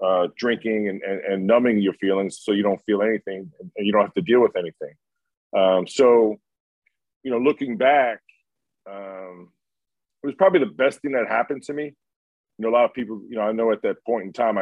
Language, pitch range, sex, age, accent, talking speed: English, 100-130 Hz, male, 40-59, American, 220 wpm